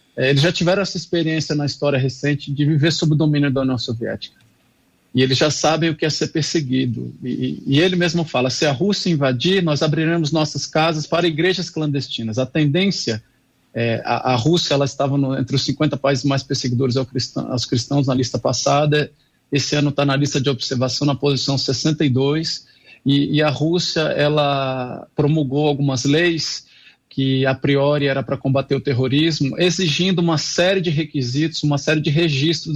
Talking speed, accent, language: 180 wpm, Brazilian, Portuguese